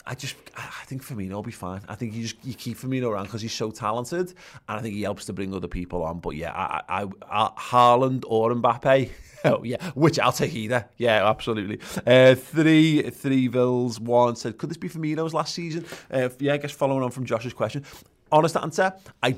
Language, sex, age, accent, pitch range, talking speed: English, male, 30-49, British, 100-130 Hz, 210 wpm